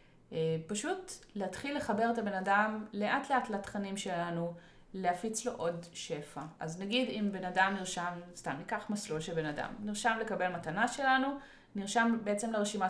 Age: 20-39